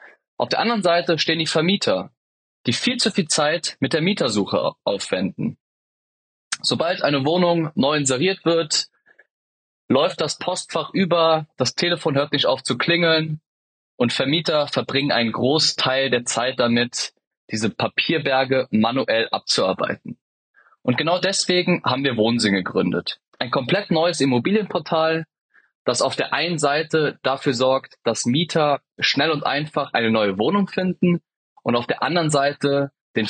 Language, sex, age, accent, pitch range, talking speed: German, male, 20-39, German, 125-165 Hz, 140 wpm